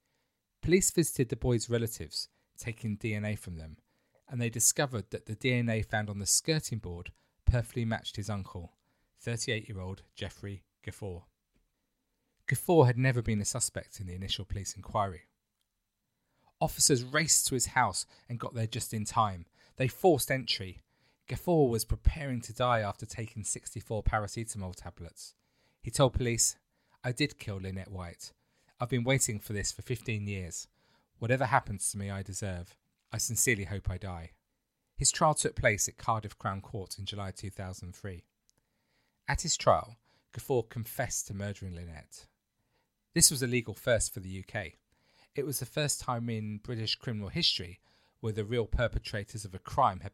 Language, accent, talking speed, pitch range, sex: English, British, 160 wpm, 100-125 Hz, male